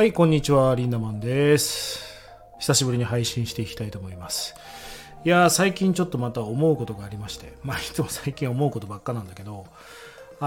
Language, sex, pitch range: Japanese, male, 115-160 Hz